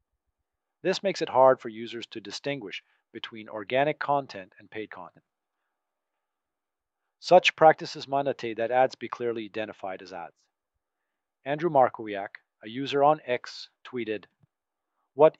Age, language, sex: 40-59, English, male